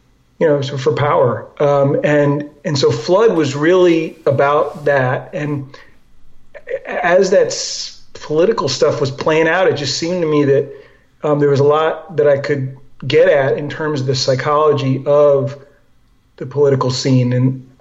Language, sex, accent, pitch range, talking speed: English, male, American, 135-155 Hz, 165 wpm